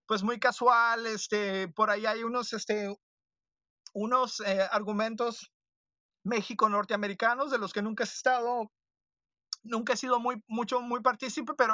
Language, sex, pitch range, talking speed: Spanish, male, 210-255 Hz, 145 wpm